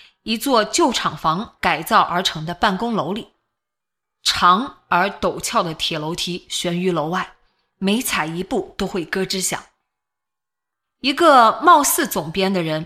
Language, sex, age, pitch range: Chinese, female, 20-39, 165-255 Hz